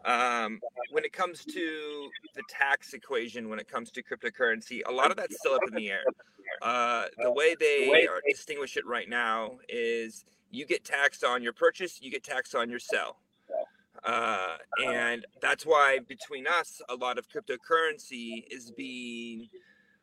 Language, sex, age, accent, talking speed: English, male, 30-49, American, 170 wpm